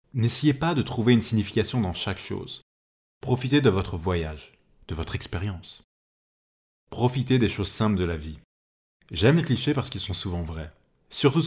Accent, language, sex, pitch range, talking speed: French, French, male, 90-125 Hz, 165 wpm